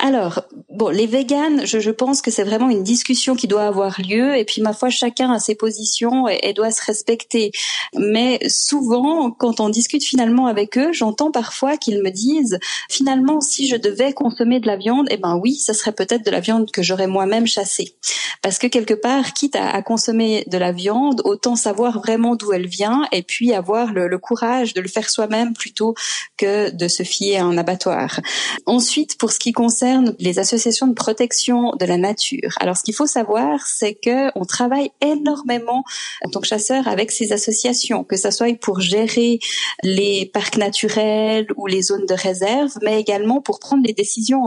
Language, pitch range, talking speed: French, 210-255 Hz, 195 wpm